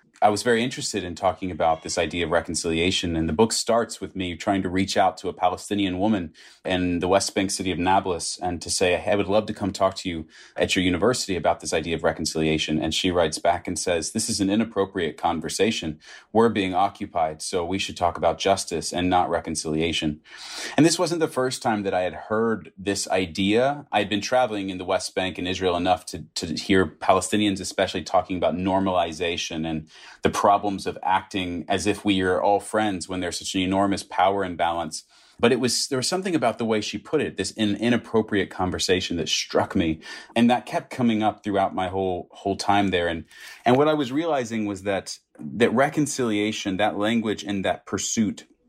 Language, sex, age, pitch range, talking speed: English, male, 30-49, 90-110 Hz, 205 wpm